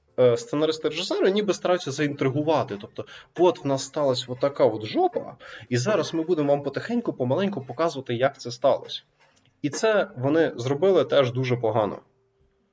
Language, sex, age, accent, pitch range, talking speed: Ukrainian, male, 20-39, native, 125-165 Hz, 150 wpm